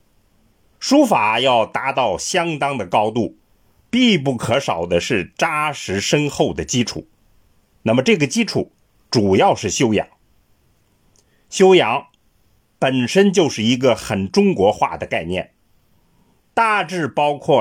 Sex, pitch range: male, 105-175 Hz